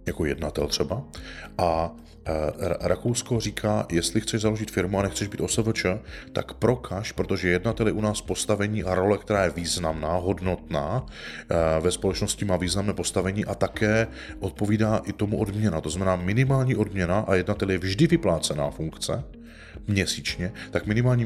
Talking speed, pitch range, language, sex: 150 wpm, 90-110 Hz, Czech, male